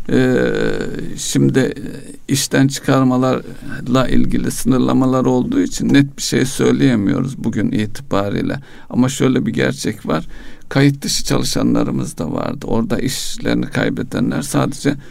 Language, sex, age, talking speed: Turkish, male, 60-79, 110 wpm